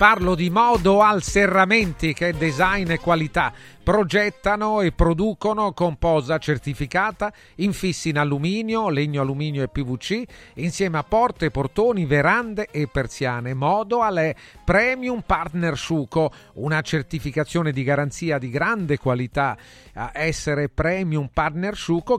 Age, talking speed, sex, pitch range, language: 40-59, 120 wpm, male, 145-200 Hz, Italian